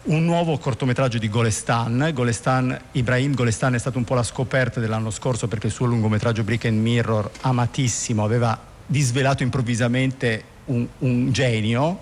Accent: native